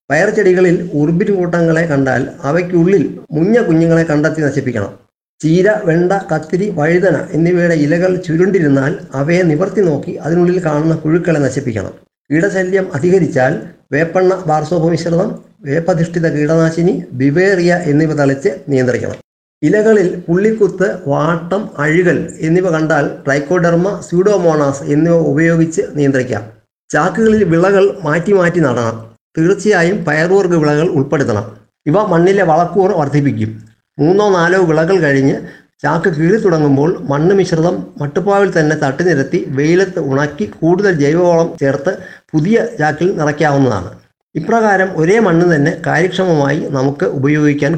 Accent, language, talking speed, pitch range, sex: native, Malayalam, 105 wpm, 140-180 Hz, male